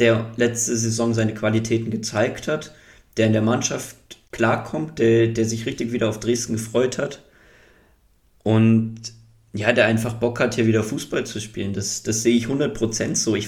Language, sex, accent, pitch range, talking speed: German, male, German, 110-120 Hz, 175 wpm